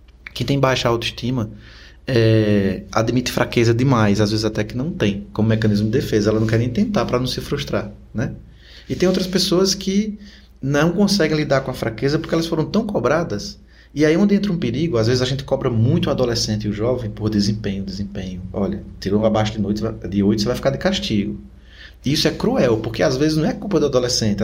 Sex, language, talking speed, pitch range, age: male, Portuguese, 215 wpm, 100-130 Hz, 20-39